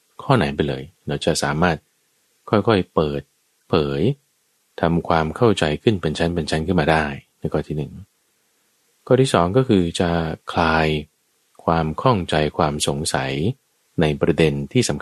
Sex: male